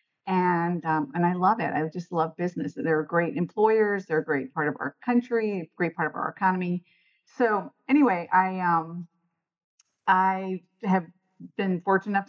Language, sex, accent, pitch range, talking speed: English, female, American, 165-185 Hz, 165 wpm